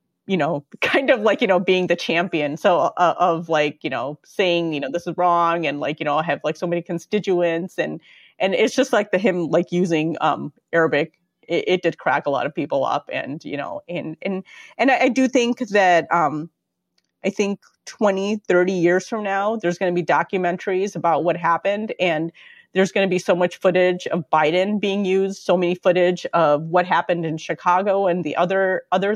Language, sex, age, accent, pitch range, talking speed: English, female, 30-49, American, 165-200 Hz, 210 wpm